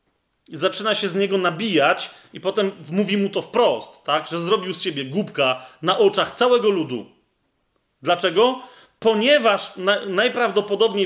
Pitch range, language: 180-220 Hz, Polish